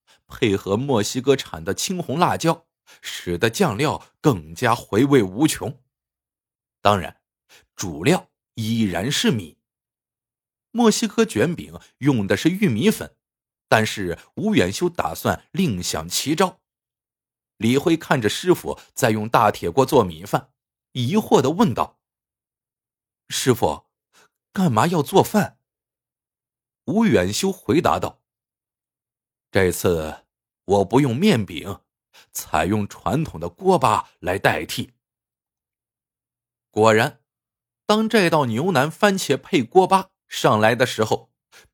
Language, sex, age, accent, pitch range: Chinese, male, 50-69, native, 110-165 Hz